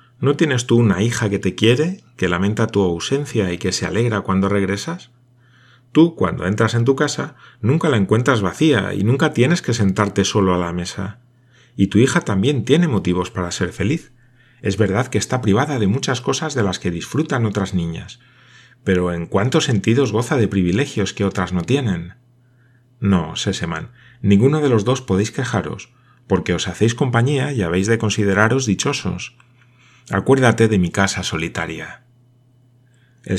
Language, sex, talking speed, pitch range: Spanish, male, 170 wpm, 95-125 Hz